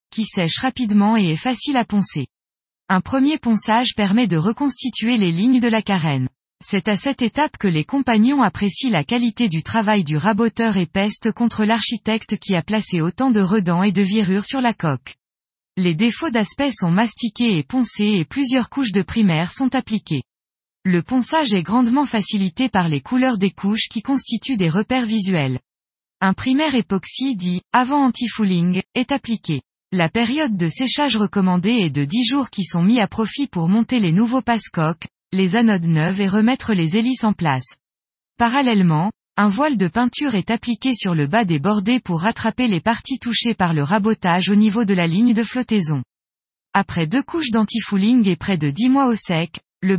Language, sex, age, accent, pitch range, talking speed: French, female, 20-39, French, 180-240 Hz, 185 wpm